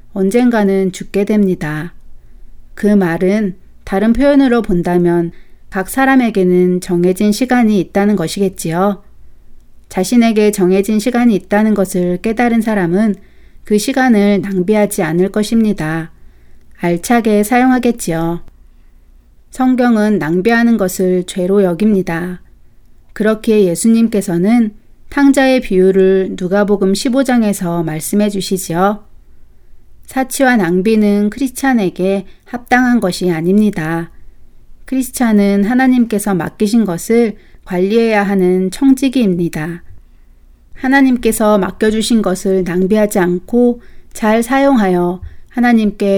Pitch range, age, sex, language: 180-230 Hz, 40-59, female, Korean